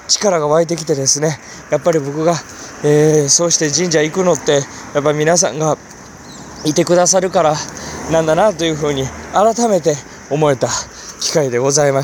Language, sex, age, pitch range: Japanese, male, 20-39, 145-220 Hz